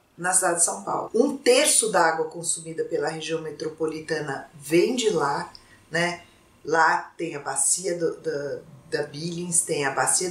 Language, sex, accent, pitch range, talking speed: Portuguese, female, Brazilian, 155-210 Hz, 165 wpm